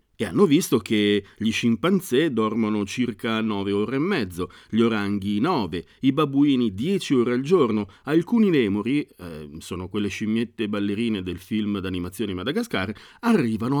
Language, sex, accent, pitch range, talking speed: Italian, male, native, 110-170 Hz, 145 wpm